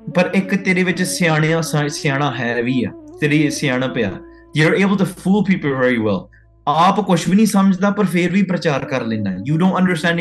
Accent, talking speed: Indian, 65 wpm